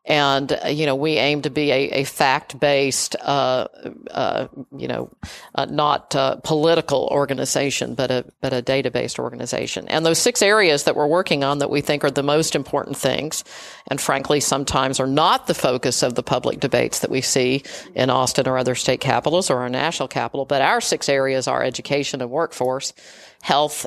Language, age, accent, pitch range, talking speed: English, 50-69, American, 135-155 Hz, 185 wpm